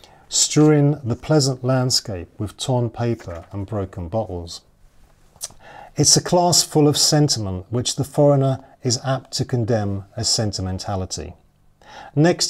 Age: 40-59